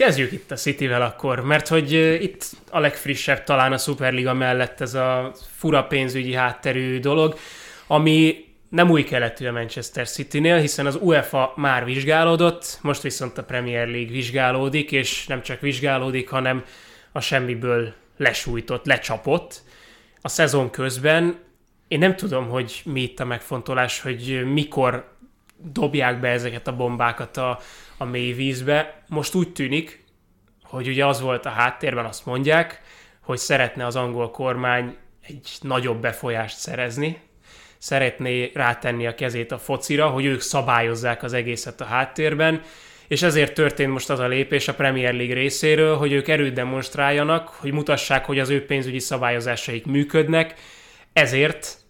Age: 20-39